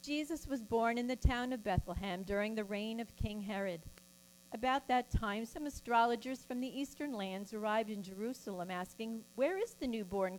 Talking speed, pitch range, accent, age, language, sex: 180 wpm, 175-240 Hz, American, 50-69, English, female